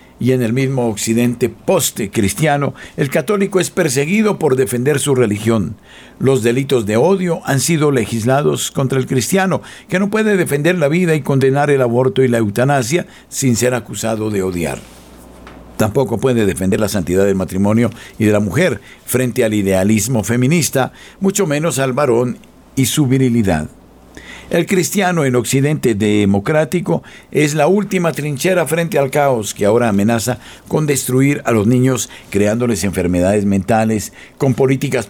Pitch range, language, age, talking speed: 115-150 Hz, Spanish, 60-79, 150 wpm